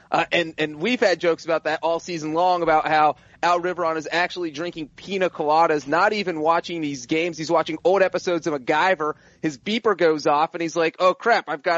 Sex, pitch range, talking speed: male, 170-220 Hz, 215 wpm